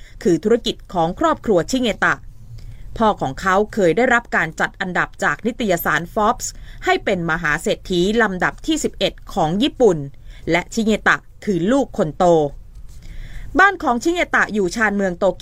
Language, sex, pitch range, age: Thai, female, 170-240 Hz, 20-39